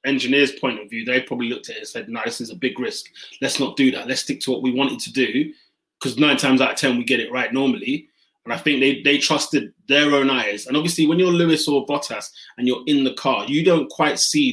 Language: English